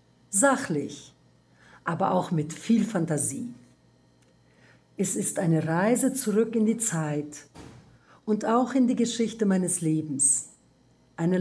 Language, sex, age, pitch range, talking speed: German, female, 60-79, 160-215 Hz, 115 wpm